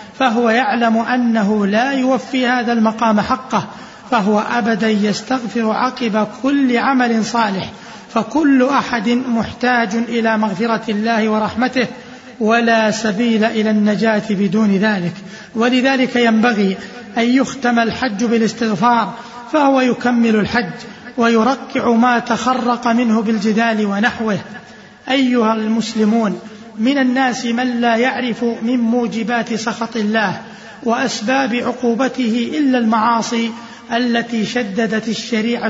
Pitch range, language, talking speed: 220-245 Hz, Arabic, 105 wpm